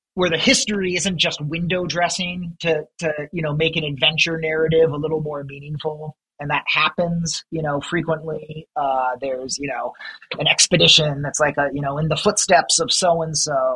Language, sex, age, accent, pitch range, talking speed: English, male, 30-49, American, 145-180 Hz, 180 wpm